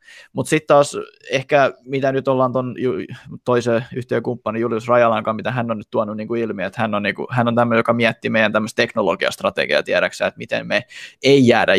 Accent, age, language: native, 20-39, Finnish